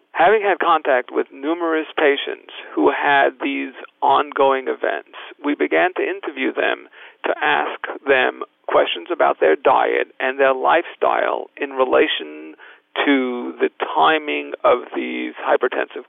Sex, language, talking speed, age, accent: male, English, 125 wpm, 50-69, American